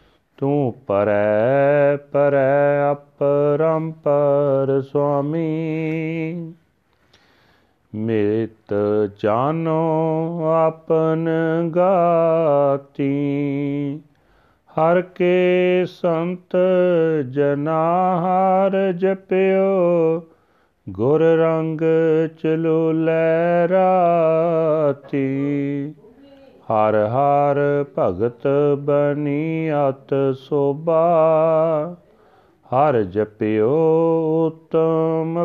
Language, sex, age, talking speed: Punjabi, male, 40-59, 45 wpm